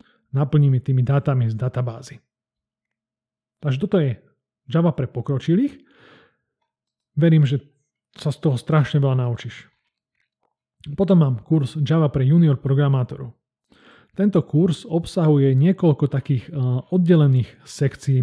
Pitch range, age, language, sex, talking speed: 130-165 Hz, 30-49, Slovak, male, 110 wpm